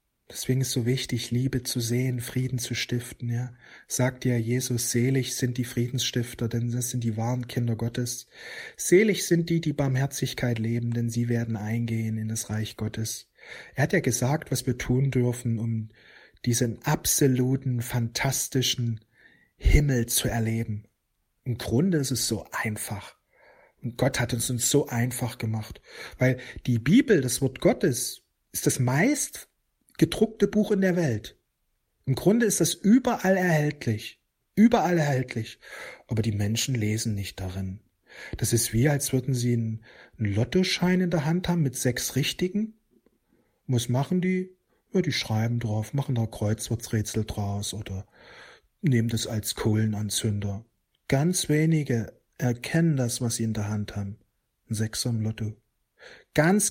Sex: male